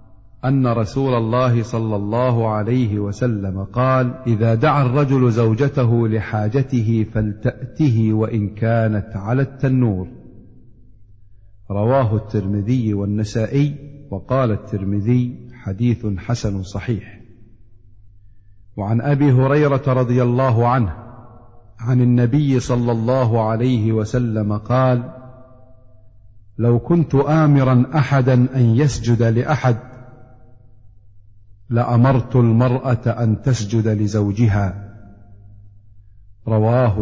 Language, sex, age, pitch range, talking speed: Arabic, male, 50-69, 105-125 Hz, 85 wpm